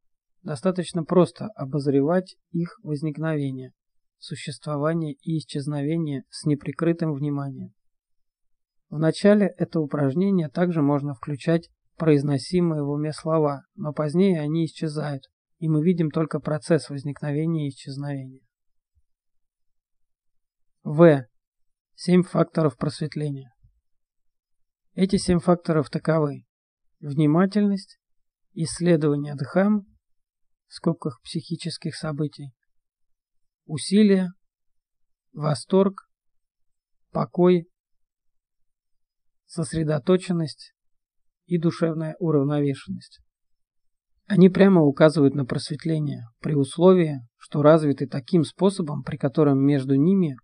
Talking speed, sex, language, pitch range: 85 wpm, male, Russian, 145-170 Hz